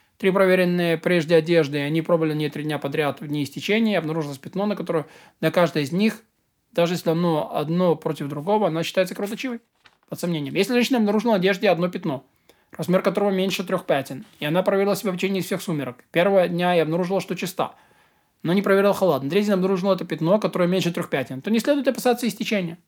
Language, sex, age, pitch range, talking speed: Russian, male, 20-39, 165-210 Hz, 195 wpm